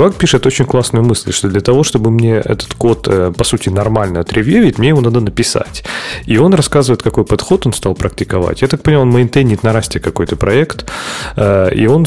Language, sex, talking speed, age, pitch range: Russian, male, 190 wpm, 30-49, 100-140 Hz